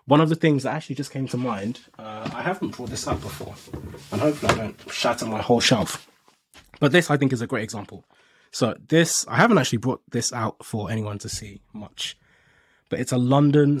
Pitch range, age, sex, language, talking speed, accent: 110-145 Hz, 20-39, male, English, 215 wpm, British